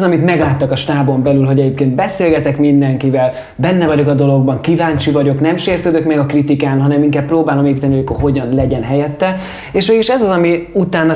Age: 20-39